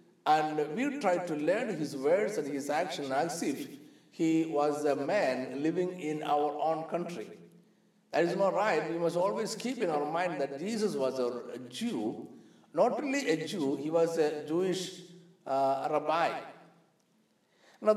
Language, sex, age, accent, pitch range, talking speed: Malayalam, male, 50-69, native, 140-205 Hz, 160 wpm